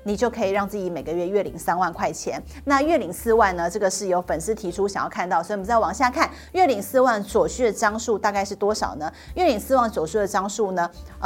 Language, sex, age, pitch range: Chinese, female, 30-49, 195-255 Hz